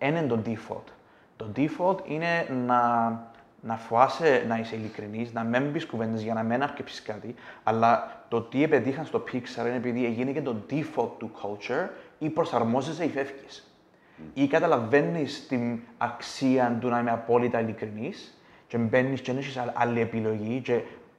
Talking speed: 165 wpm